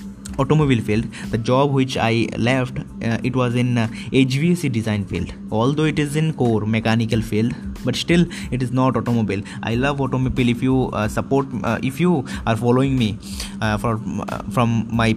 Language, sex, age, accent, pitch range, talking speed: Hindi, male, 20-39, native, 110-135 Hz, 185 wpm